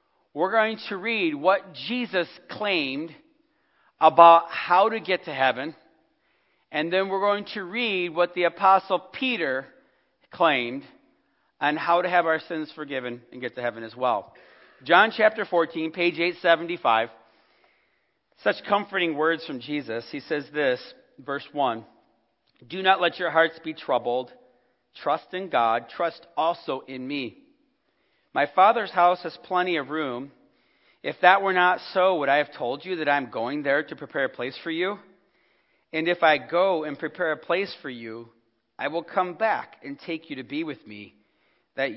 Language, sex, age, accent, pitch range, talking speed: English, male, 40-59, American, 135-185 Hz, 165 wpm